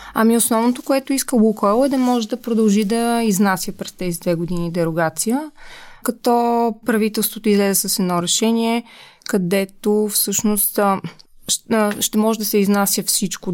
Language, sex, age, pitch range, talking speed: Bulgarian, female, 20-39, 185-235 Hz, 135 wpm